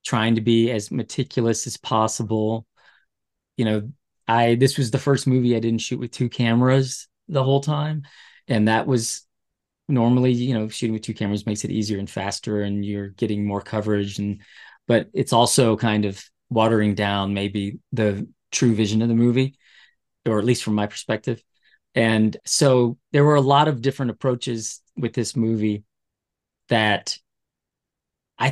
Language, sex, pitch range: English, male, 105-130 Hz